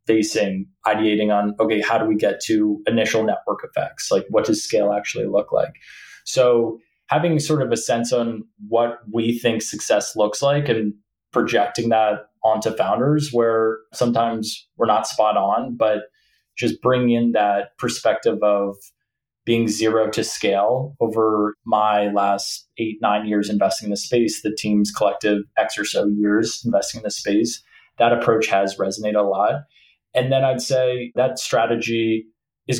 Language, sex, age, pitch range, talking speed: English, male, 20-39, 105-120 Hz, 160 wpm